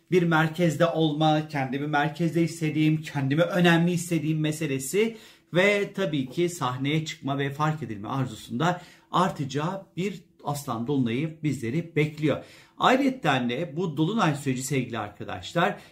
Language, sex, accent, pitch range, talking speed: Turkish, male, native, 140-175 Hz, 120 wpm